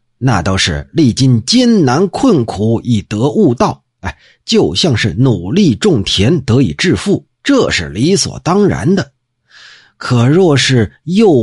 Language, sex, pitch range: Chinese, male, 100-155 Hz